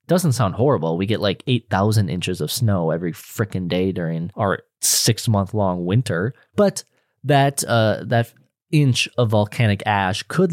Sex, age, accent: male, 20-39, American